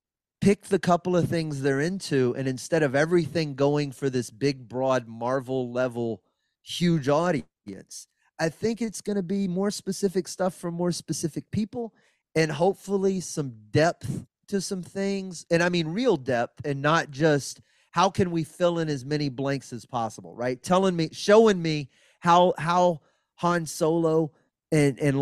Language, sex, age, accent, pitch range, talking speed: English, male, 30-49, American, 135-175 Hz, 160 wpm